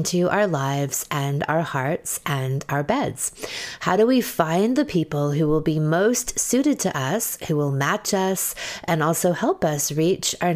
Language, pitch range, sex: English, 145-190 Hz, female